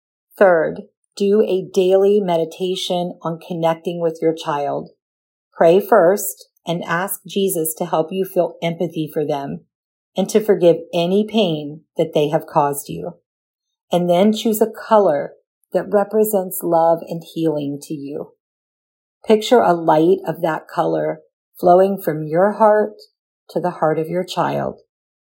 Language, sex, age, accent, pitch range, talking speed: English, female, 40-59, American, 160-200 Hz, 145 wpm